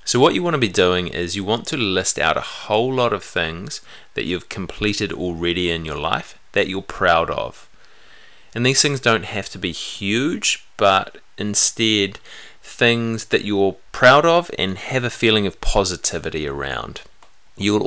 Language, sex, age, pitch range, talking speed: English, male, 30-49, 85-115 Hz, 175 wpm